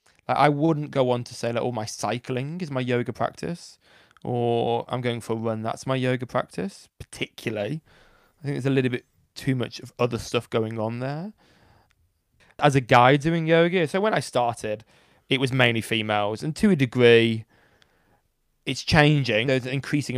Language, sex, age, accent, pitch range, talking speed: English, male, 20-39, British, 115-135 Hz, 180 wpm